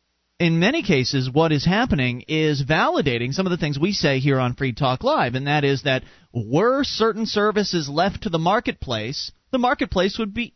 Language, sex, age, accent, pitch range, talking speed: English, male, 30-49, American, 135-185 Hz, 195 wpm